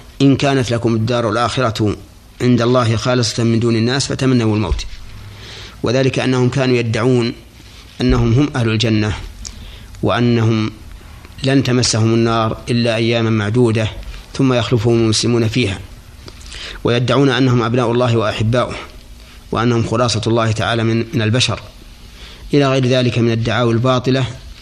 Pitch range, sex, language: 105-125 Hz, male, Arabic